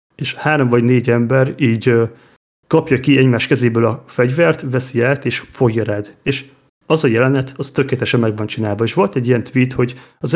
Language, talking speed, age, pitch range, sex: Hungarian, 195 wpm, 30-49, 120-135 Hz, male